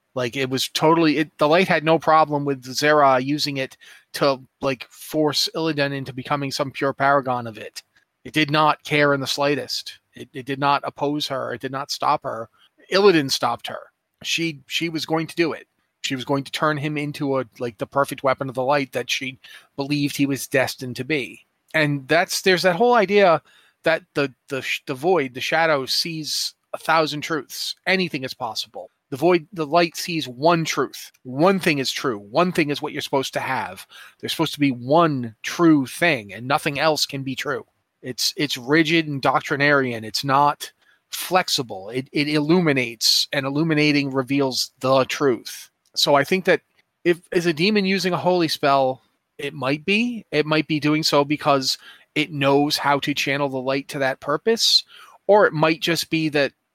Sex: male